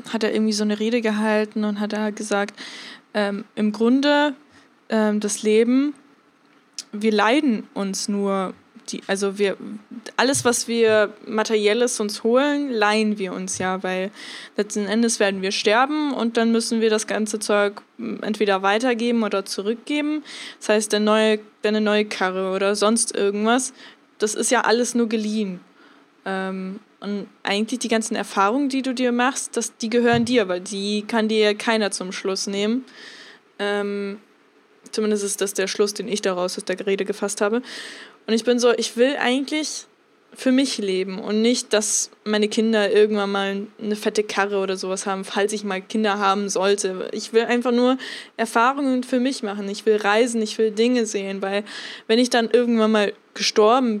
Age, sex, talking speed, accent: 10-29, female, 170 wpm, German